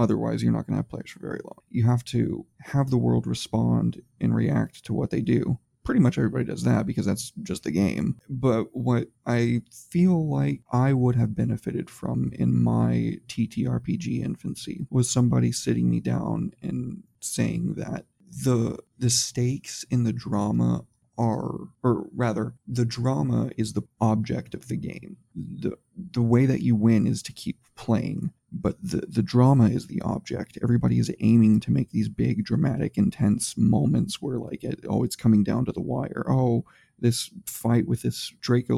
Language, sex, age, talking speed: English, male, 30-49, 180 wpm